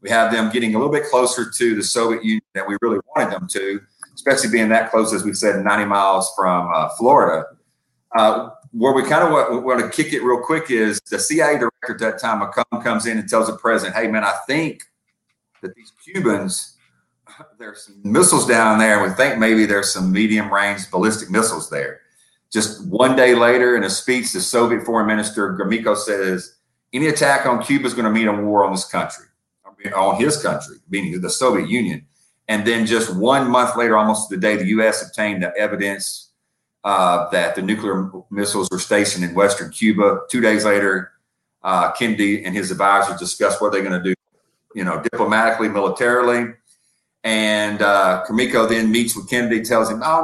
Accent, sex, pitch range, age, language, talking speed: American, male, 100-120 Hz, 40-59, English, 195 wpm